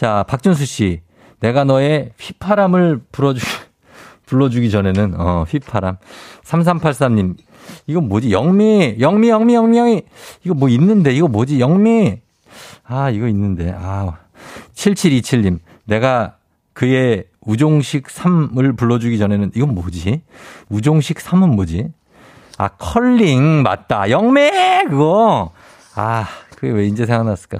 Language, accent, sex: Korean, native, male